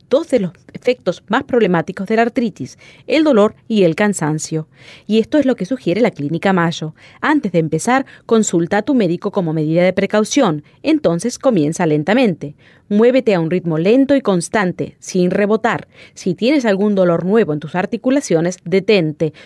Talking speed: 170 wpm